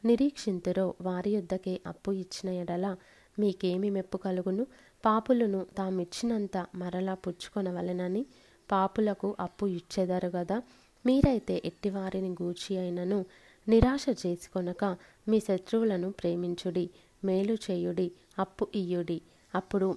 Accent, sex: native, female